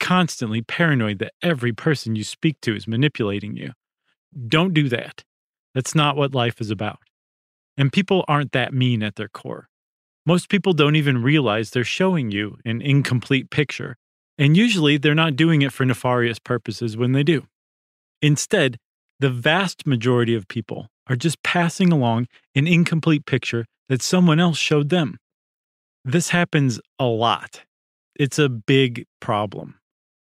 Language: English